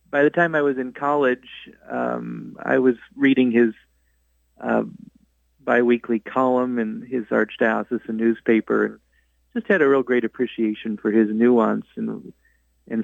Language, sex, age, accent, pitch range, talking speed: English, male, 40-59, American, 115-145 Hz, 145 wpm